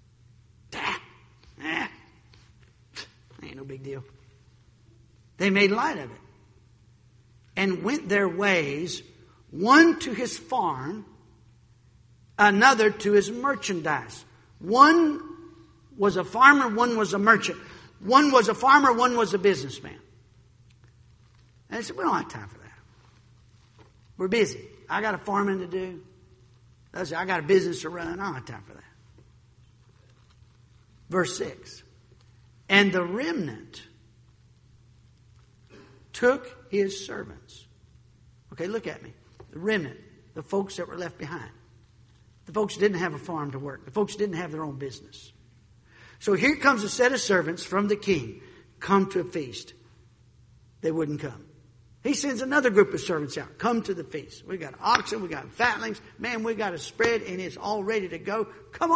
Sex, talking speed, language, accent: male, 155 wpm, English, American